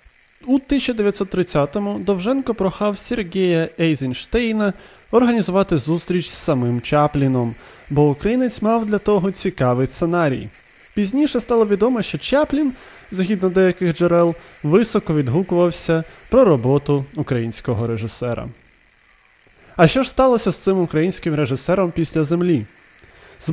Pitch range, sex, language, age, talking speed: 150-210 Hz, male, Ukrainian, 20-39, 110 wpm